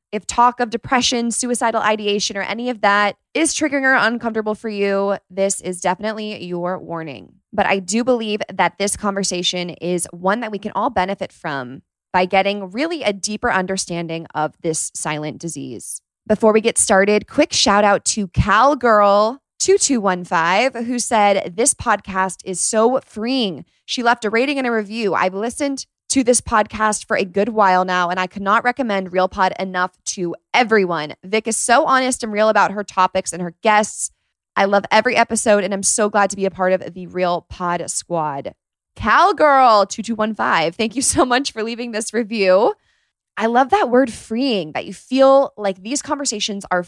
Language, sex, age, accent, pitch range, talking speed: English, female, 20-39, American, 185-235 Hz, 180 wpm